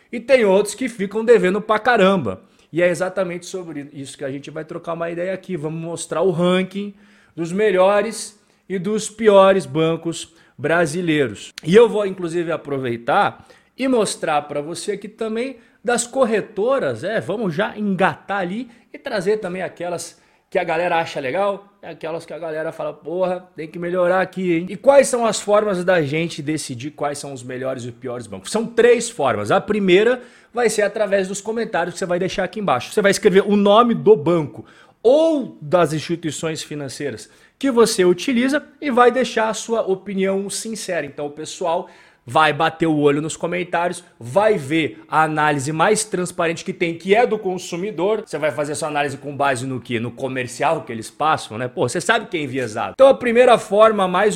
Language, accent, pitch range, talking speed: Portuguese, Brazilian, 155-210 Hz, 190 wpm